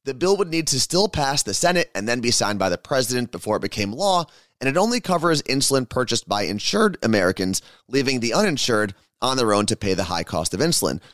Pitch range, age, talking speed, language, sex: 105-150 Hz, 30-49, 225 wpm, English, male